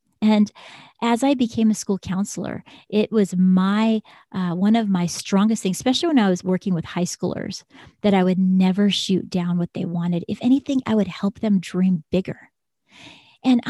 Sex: female